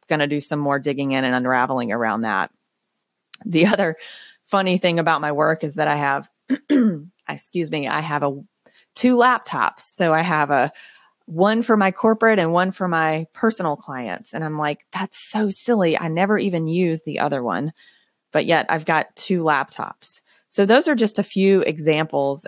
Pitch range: 150-180 Hz